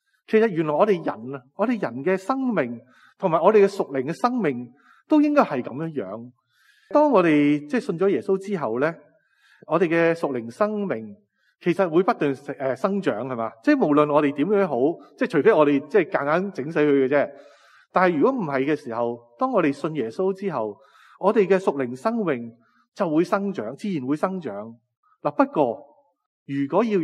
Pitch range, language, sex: 140-210 Hz, Chinese, male